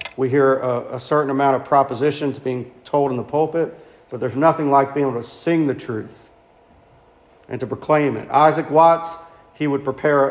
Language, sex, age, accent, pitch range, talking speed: English, male, 40-59, American, 125-150 Hz, 185 wpm